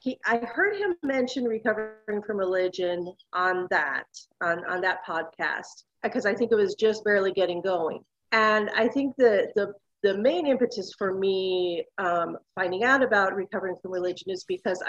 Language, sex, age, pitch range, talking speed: English, female, 40-59, 185-235 Hz, 165 wpm